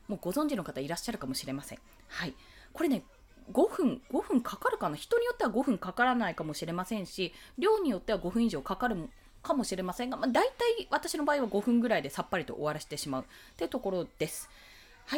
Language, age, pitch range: Japanese, 20-39, 205-300 Hz